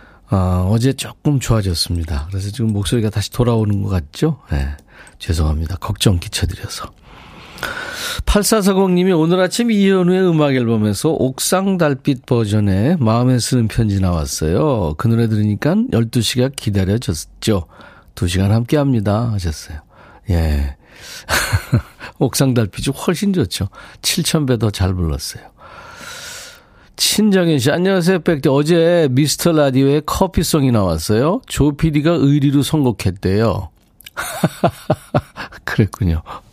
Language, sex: Korean, male